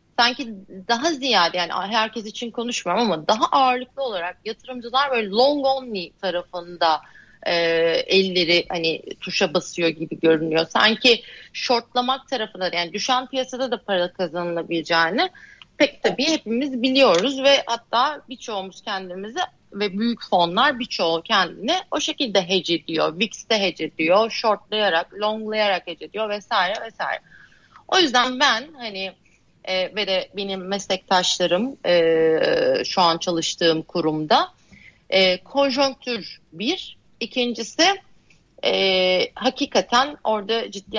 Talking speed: 115 wpm